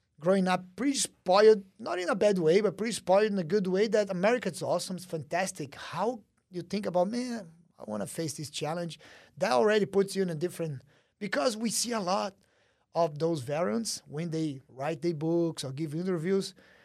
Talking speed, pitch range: 195 wpm, 160-210 Hz